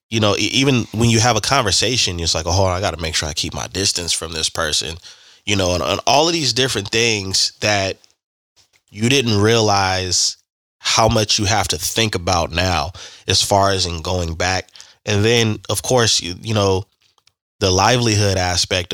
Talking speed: 190 wpm